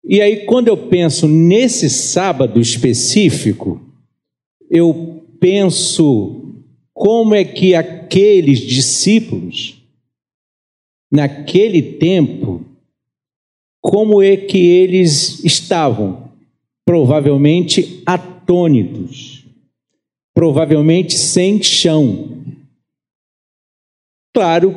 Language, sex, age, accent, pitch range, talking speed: Portuguese, male, 50-69, Brazilian, 140-185 Hz, 70 wpm